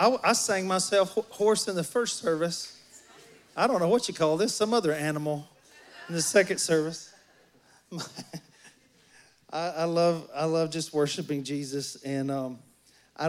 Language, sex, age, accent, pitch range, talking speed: English, male, 40-59, American, 150-185 Hz, 160 wpm